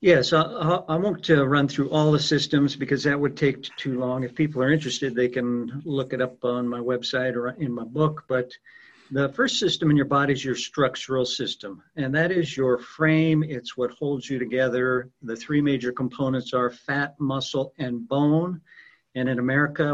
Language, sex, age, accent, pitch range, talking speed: English, male, 50-69, American, 125-145 Hz, 195 wpm